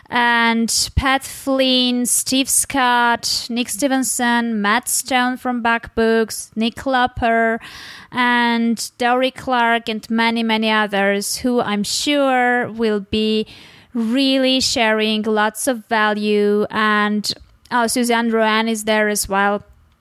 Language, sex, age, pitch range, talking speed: English, female, 20-39, 200-240 Hz, 115 wpm